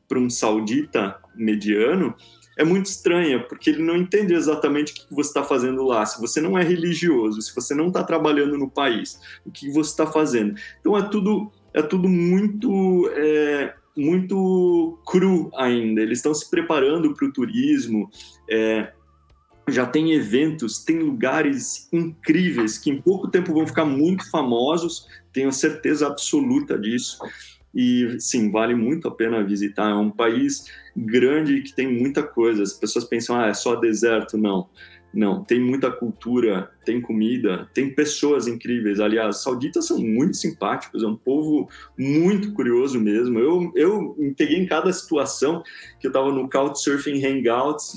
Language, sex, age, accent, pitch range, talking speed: Portuguese, male, 20-39, Brazilian, 120-175 Hz, 160 wpm